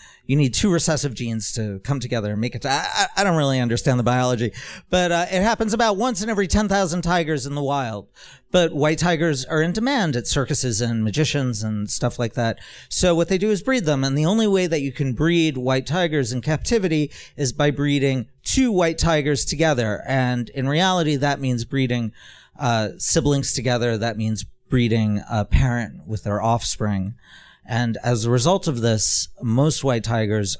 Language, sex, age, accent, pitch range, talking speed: English, male, 40-59, American, 115-155 Hz, 190 wpm